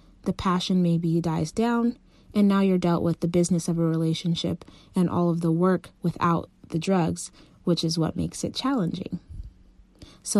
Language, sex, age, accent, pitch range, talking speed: English, female, 20-39, American, 170-185 Hz, 175 wpm